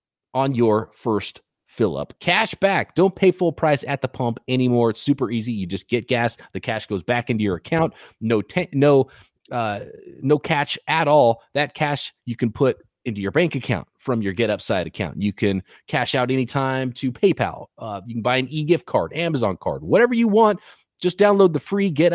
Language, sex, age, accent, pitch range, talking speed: English, male, 30-49, American, 120-185 Hz, 200 wpm